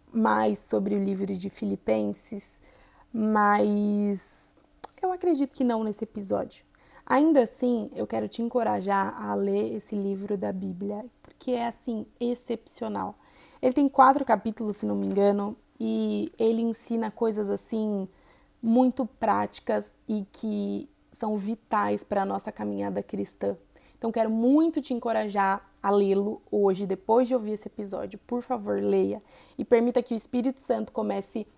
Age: 20-39